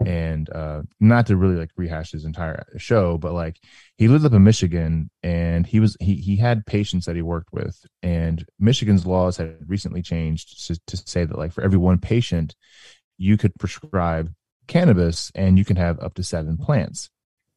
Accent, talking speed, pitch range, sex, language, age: American, 190 wpm, 80-105 Hz, male, English, 20-39